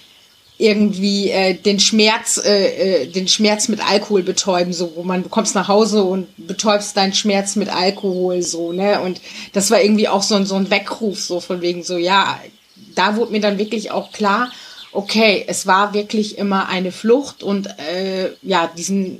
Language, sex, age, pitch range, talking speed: German, female, 30-49, 180-210 Hz, 180 wpm